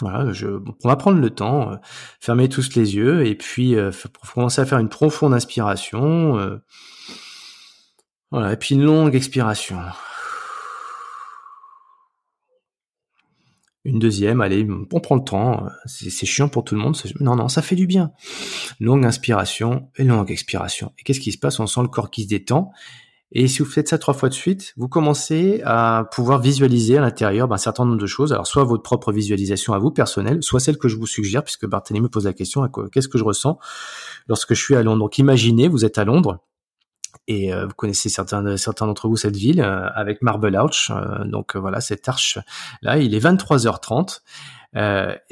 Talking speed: 200 wpm